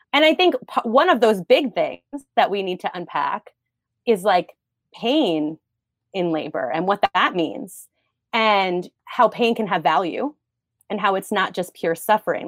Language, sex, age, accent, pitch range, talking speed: English, female, 30-49, American, 175-240 Hz, 170 wpm